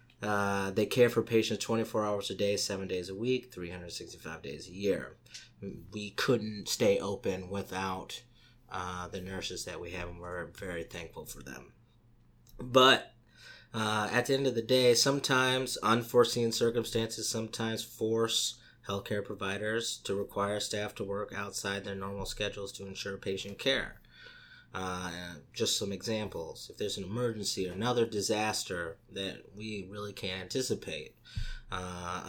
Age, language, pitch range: 30-49, English, 95-115 Hz